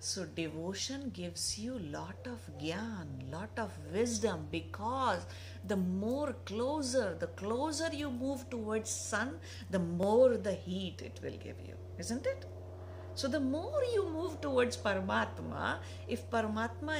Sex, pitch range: female, 85-95 Hz